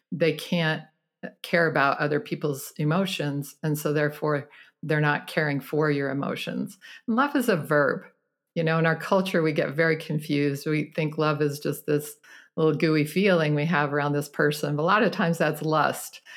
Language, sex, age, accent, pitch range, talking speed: English, female, 50-69, American, 145-165 Hz, 185 wpm